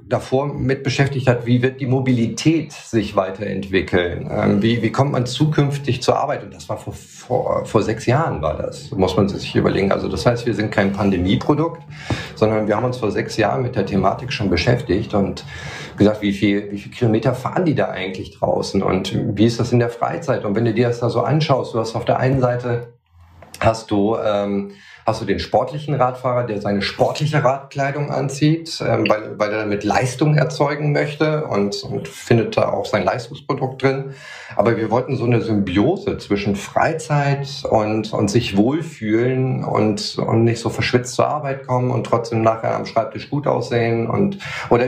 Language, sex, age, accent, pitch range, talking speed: German, male, 40-59, German, 110-135 Hz, 190 wpm